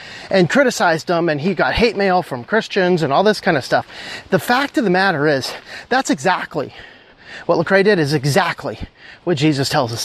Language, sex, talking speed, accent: English, male, 195 wpm, American